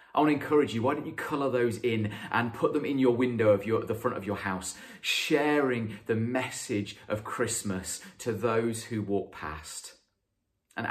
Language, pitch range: English, 95-120 Hz